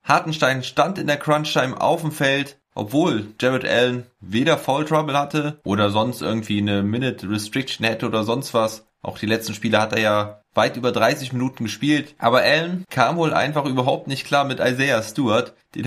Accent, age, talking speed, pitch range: German, 20-39, 190 wpm, 115-140 Hz